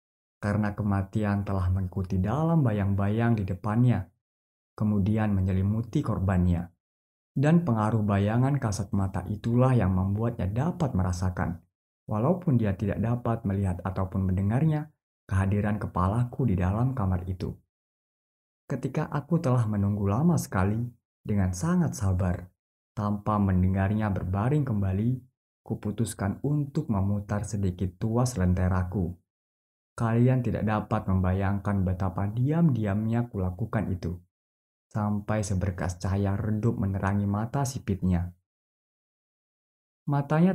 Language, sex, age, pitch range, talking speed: Indonesian, male, 20-39, 95-115 Hz, 100 wpm